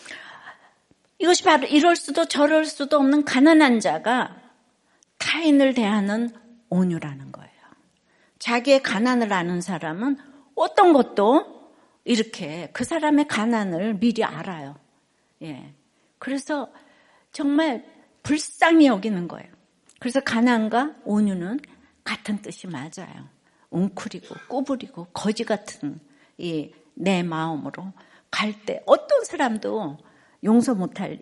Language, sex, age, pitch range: Korean, female, 60-79, 210-285 Hz